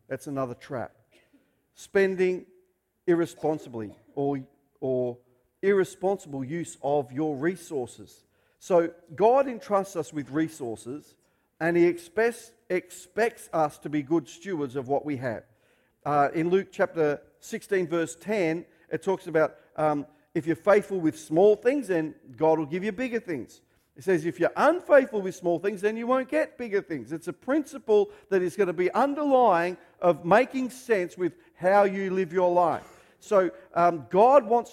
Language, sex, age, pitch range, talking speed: English, male, 50-69, 160-205 Hz, 155 wpm